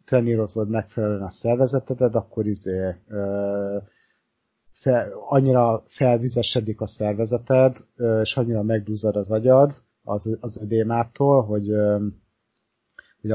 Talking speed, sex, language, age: 100 wpm, male, Hungarian, 30-49